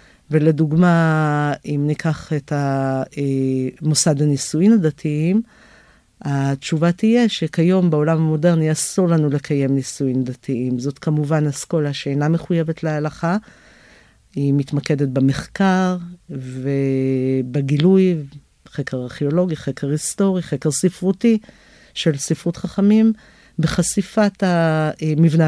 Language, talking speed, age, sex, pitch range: Hebrew, 90 wpm, 50-69, female, 145-175 Hz